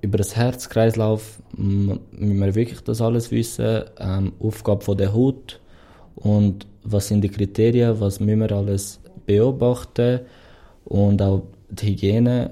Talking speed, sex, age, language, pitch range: 130 wpm, male, 20-39, German, 90-110 Hz